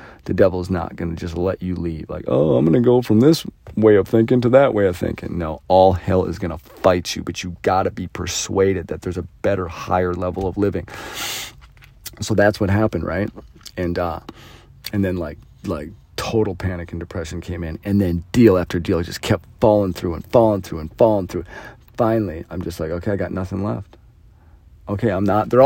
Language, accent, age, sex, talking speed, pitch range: English, American, 40-59, male, 220 wpm, 90-105 Hz